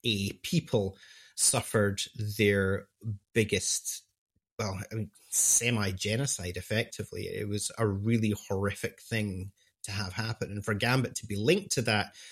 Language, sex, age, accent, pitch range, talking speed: English, male, 30-49, British, 100-115 Hz, 120 wpm